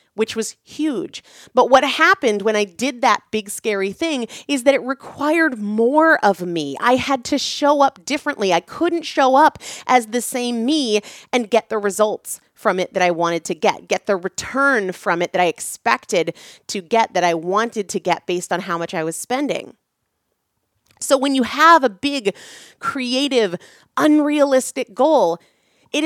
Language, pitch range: English, 160-255 Hz